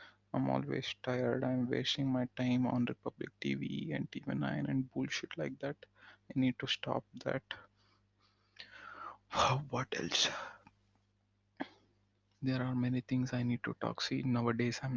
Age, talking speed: 20-39, 140 wpm